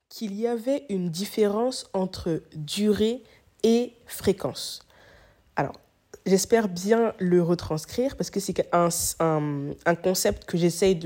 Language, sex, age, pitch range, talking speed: French, female, 20-39, 175-210 Hz, 125 wpm